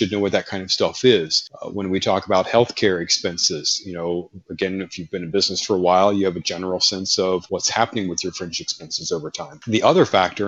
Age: 30-49